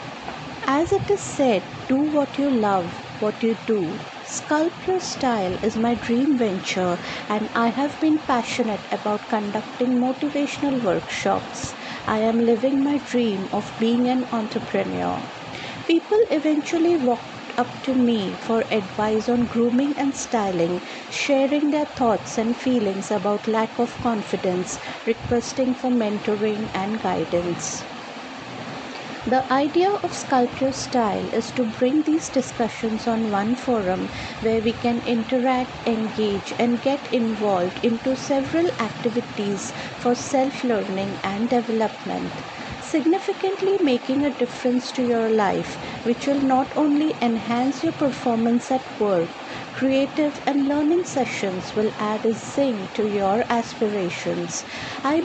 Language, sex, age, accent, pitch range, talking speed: English, female, 50-69, Indian, 220-270 Hz, 125 wpm